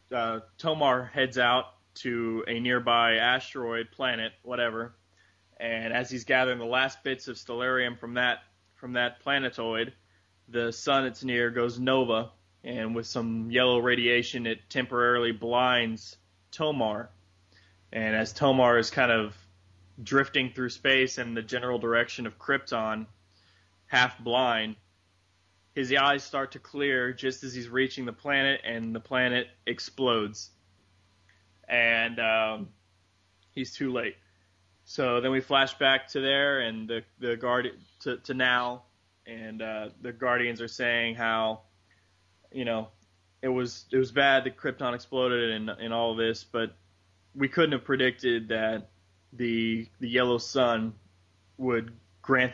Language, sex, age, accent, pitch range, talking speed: English, male, 20-39, American, 105-125 Hz, 140 wpm